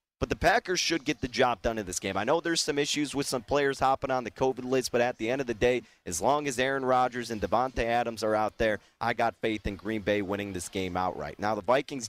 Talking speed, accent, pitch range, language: 275 wpm, American, 115-135 Hz, English